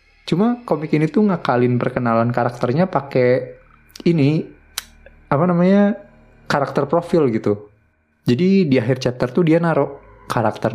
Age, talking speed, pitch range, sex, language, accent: 20-39, 125 wpm, 110-140 Hz, male, Indonesian, native